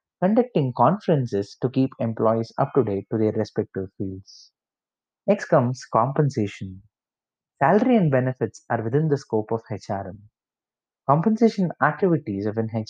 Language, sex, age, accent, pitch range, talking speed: English, male, 30-49, Indian, 110-150 Hz, 120 wpm